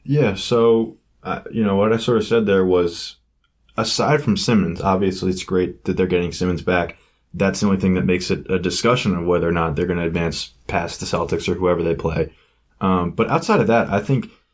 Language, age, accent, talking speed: English, 20-39, American, 225 wpm